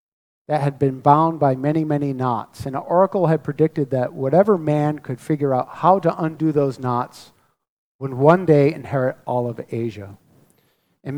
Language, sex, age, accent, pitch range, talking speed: English, male, 50-69, American, 130-165 Hz, 165 wpm